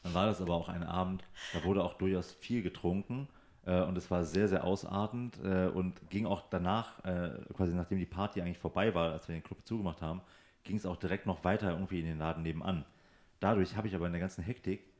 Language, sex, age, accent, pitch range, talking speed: German, male, 40-59, German, 85-100 Hz, 230 wpm